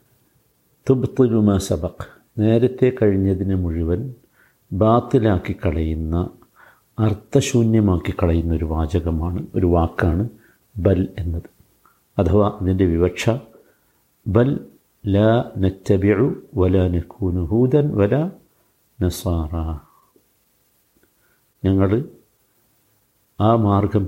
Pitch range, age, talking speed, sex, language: 95-115 Hz, 50-69, 55 wpm, male, Malayalam